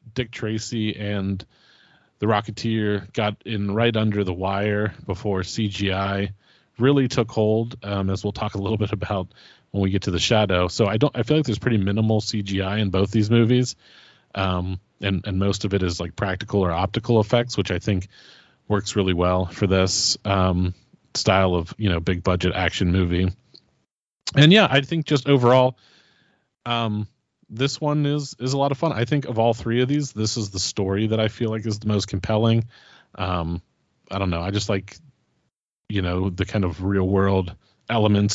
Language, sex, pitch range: English, male, 95-115 Hz